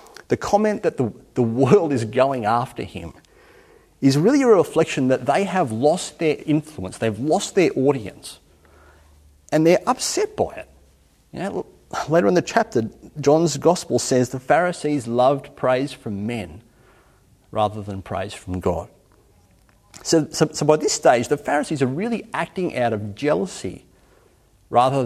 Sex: male